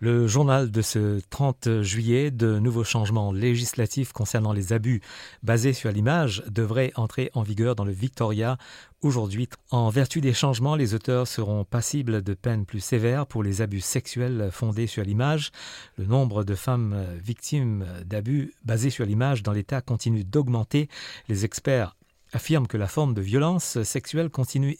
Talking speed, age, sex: 160 wpm, 50-69, male